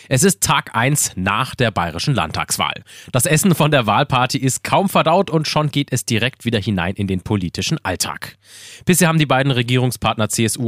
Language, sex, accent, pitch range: German, male, German, 105-145 Hz